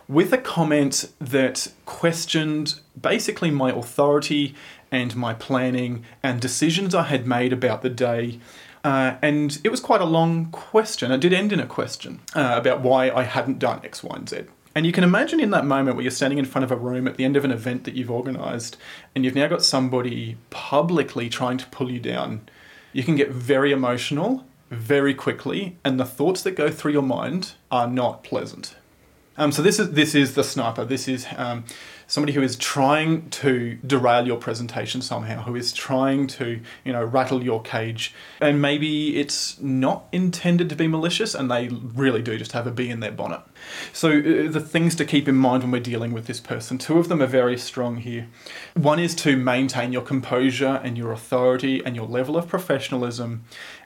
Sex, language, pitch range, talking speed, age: male, English, 125-150 Hz, 200 wpm, 30-49